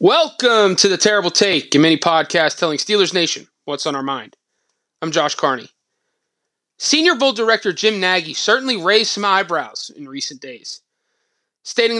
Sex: male